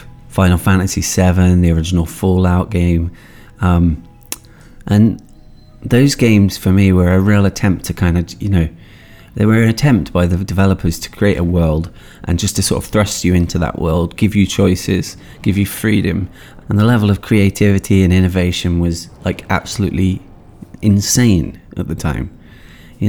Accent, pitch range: British, 90-105 Hz